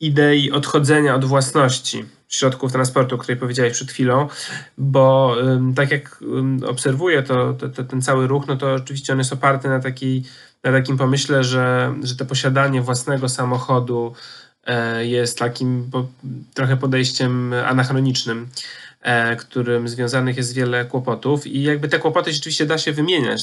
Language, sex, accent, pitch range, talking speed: Polish, male, native, 130-145 Hz, 135 wpm